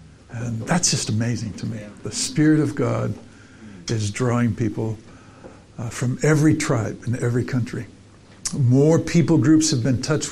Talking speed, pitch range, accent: 150 wpm, 105-135 Hz, American